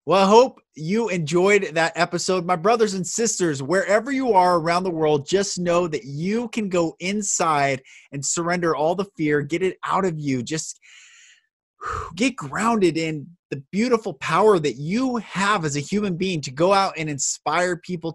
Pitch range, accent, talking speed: 130-180 Hz, American, 180 wpm